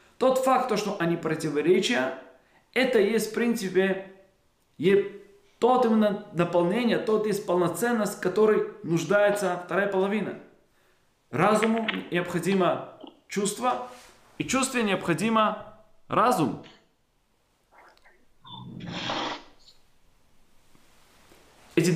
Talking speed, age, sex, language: 75 wpm, 20-39, male, Russian